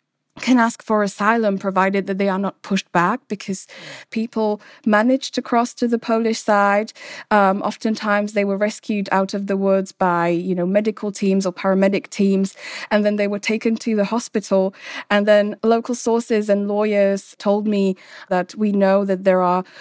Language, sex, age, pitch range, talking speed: English, female, 20-39, 185-210 Hz, 180 wpm